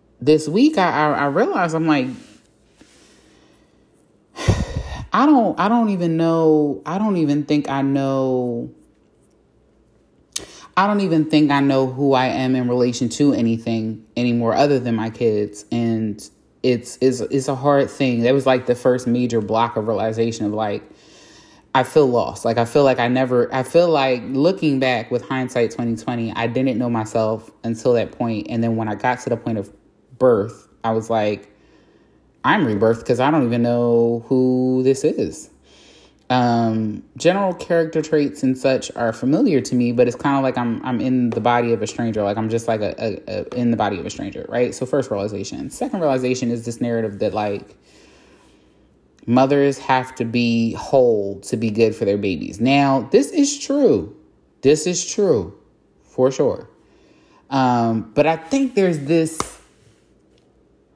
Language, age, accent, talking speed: English, 20-39, American, 170 wpm